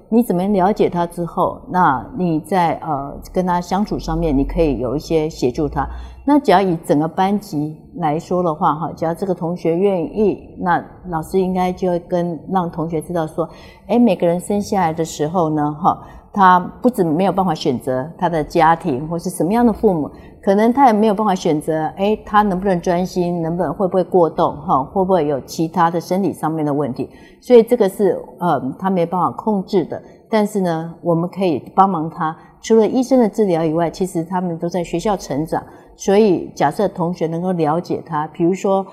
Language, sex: Chinese, female